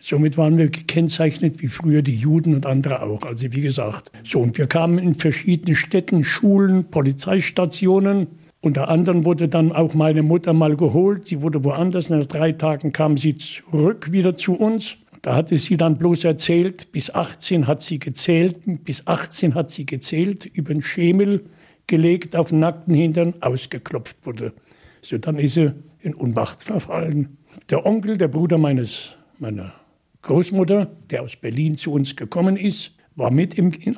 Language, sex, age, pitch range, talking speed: German, male, 60-79, 150-180 Hz, 165 wpm